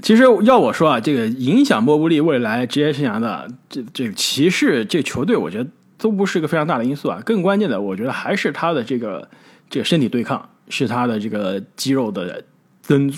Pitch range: 130-220 Hz